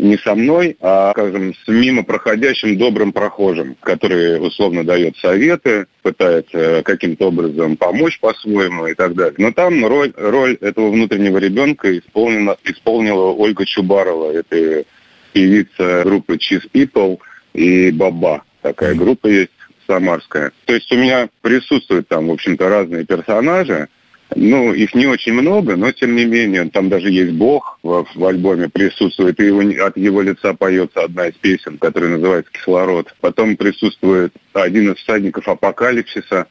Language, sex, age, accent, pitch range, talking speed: Russian, male, 30-49, native, 90-110 Hz, 145 wpm